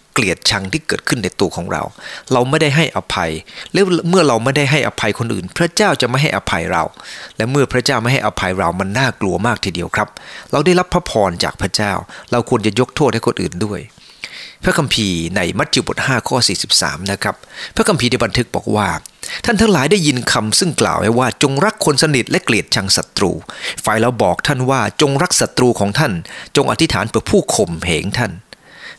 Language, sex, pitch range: English, male, 105-150 Hz